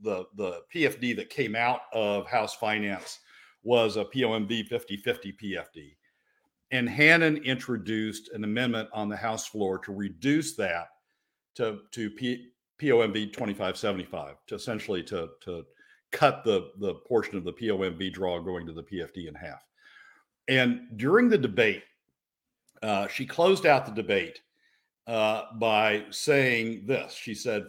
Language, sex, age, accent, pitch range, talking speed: English, male, 50-69, American, 105-125 Hz, 140 wpm